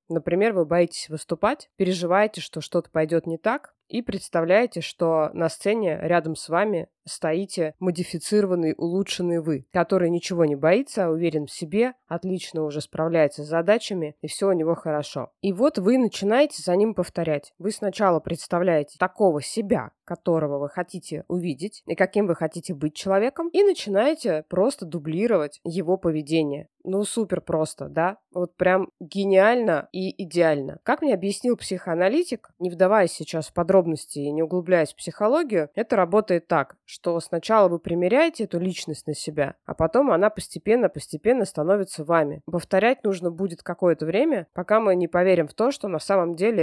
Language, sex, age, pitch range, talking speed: Russian, female, 20-39, 165-195 Hz, 160 wpm